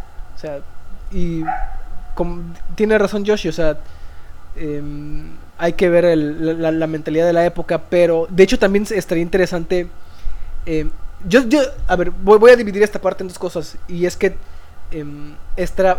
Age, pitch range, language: 20-39, 150-185 Hz, Spanish